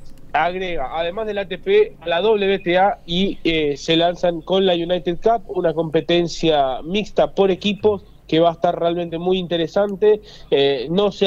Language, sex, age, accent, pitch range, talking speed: Spanish, male, 30-49, Argentinian, 165-195 Hz, 160 wpm